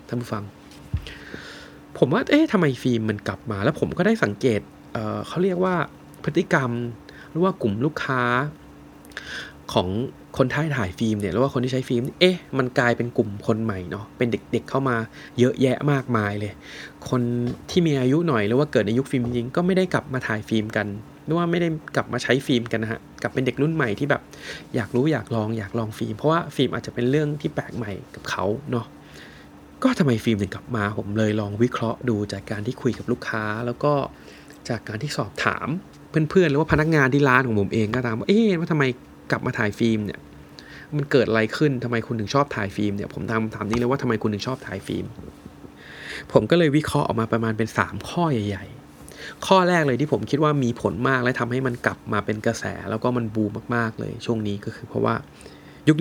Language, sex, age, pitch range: Thai, male, 20-39, 110-140 Hz